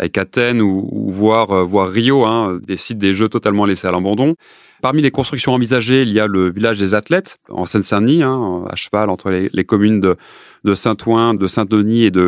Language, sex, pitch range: French, male, 95-115 Hz